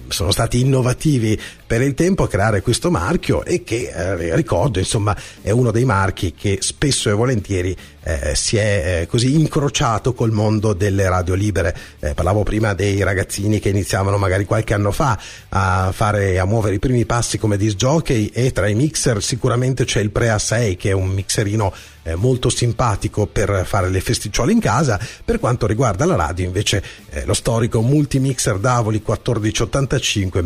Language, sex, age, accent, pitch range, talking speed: Italian, male, 40-59, native, 95-120 Hz, 175 wpm